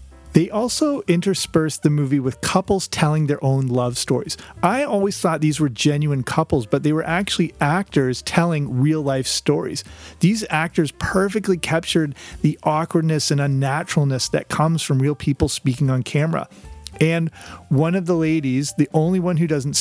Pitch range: 130-165 Hz